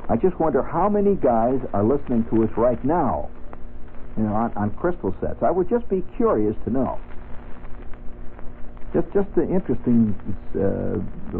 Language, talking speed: English, 160 wpm